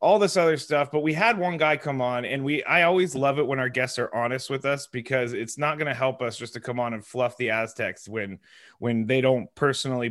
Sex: male